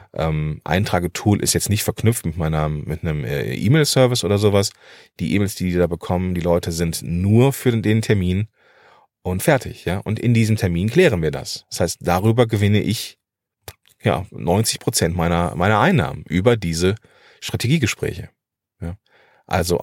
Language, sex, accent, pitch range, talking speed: German, male, German, 85-110 Hz, 160 wpm